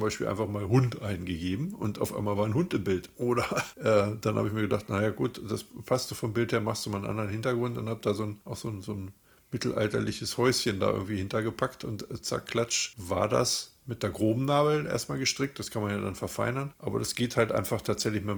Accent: German